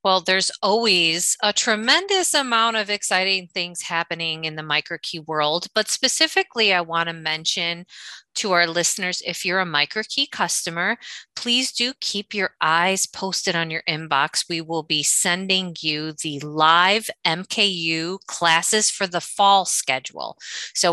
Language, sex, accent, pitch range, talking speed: English, female, American, 165-225 Hz, 145 wpm